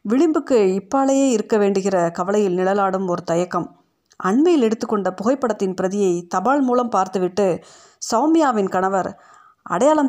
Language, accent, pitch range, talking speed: Tamil, native, 190-240 Hz, 105 wpm